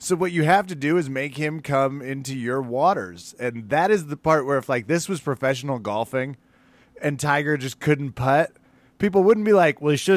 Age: 20-39